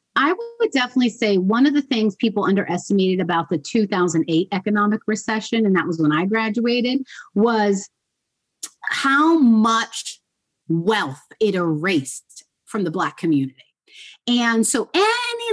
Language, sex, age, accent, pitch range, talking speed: English, female, 30-49, American, 180-255 Hz, 130 wpm